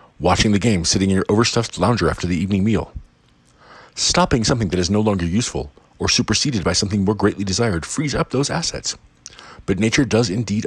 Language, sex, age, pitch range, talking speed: English, male, 40-59, 90-115 Hz, 190 wpm